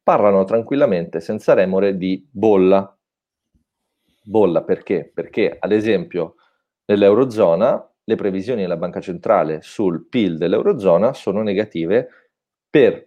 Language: Italian